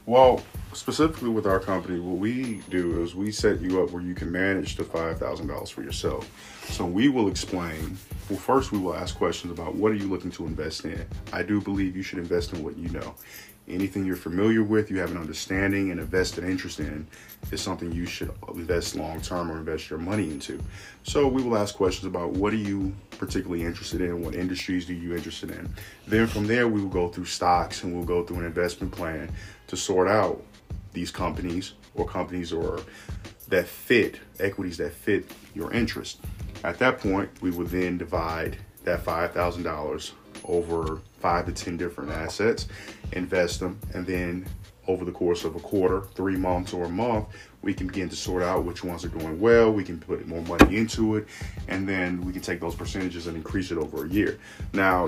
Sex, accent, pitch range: male, American, 85-100 Hz